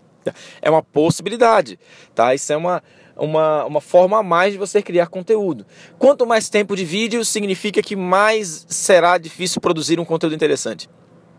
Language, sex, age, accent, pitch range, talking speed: Portuguese, male, 20-39, Brazilian, 150-190 Hz, 160 wpm